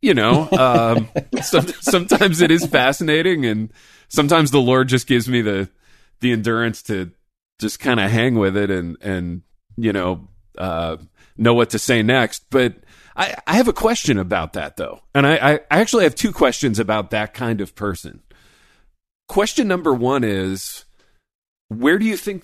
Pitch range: 100-135 Hz